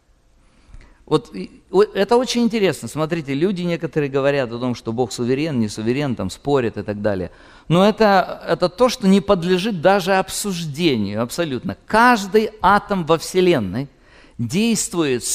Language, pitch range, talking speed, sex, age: English, 125-195 Hz, 135 wpm, male, 50-69